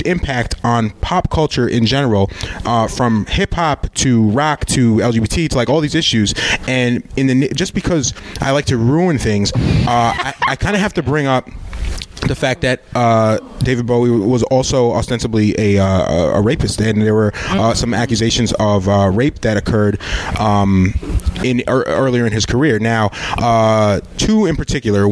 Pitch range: 105-125 Hz